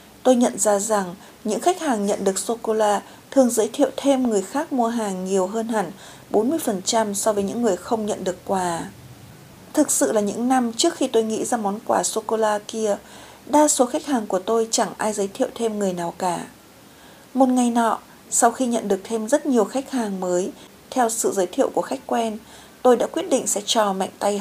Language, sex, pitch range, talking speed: Vietnamese, female, 200-250 Hz, 210 wpm